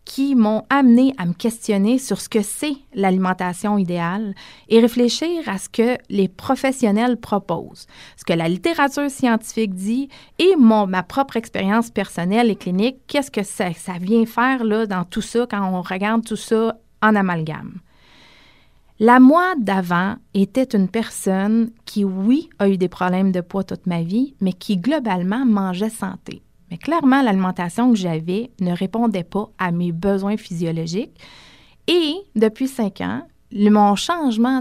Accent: Canadian